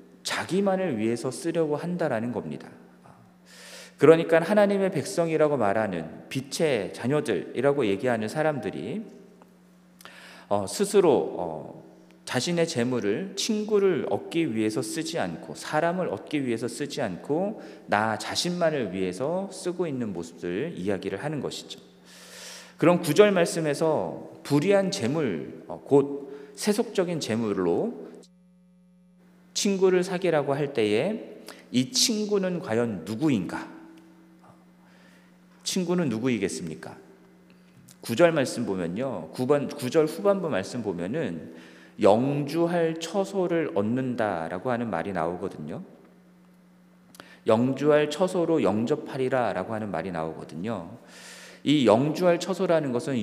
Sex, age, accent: male, 40-59, native